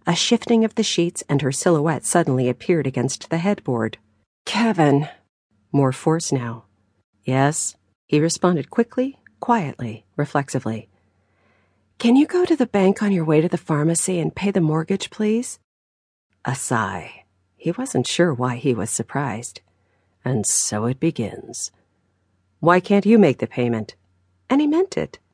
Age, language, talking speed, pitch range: 40-59, English, 150 wpm, 120-200 Hz